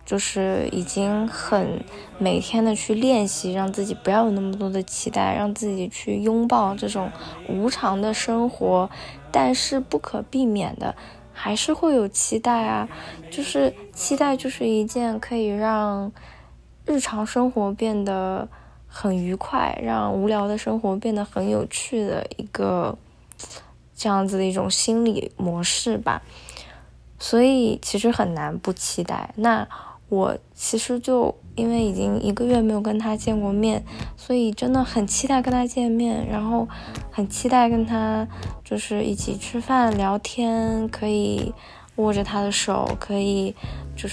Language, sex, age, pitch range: Chinese, female, 10-29, 190-230 Hz